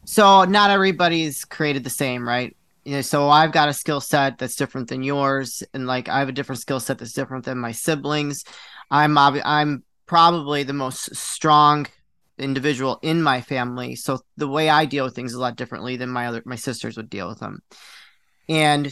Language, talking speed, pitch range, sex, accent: English, 205 wpm, 135-160 Hz, male, American